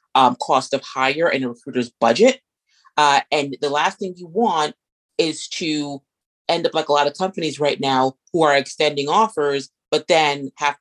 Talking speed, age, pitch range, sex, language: 185 wpm, 30-49, 140-195 Hz, female, English